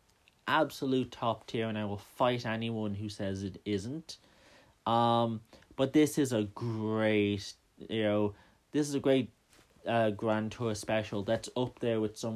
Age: 30-49